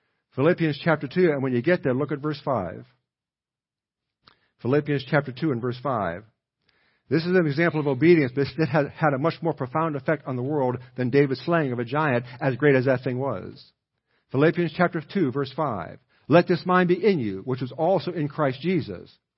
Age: 50-69